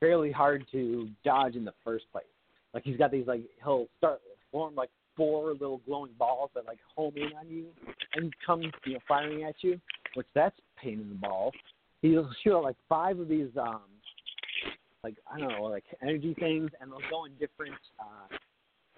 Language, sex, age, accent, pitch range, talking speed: English, male, 40-59, American, 125-155 Hz, 195 wpm